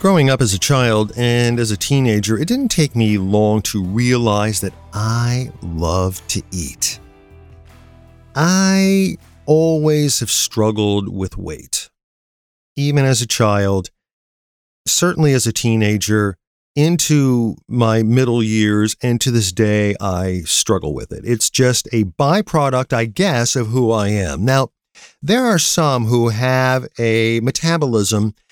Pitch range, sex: 105-140 Hz, male